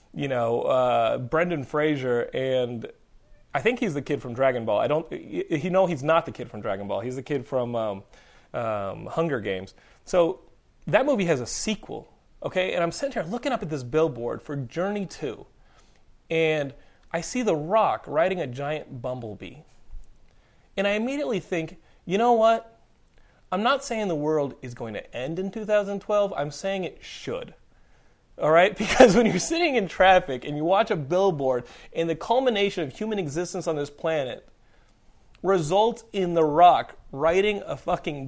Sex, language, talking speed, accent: male, English, 175 wpm, American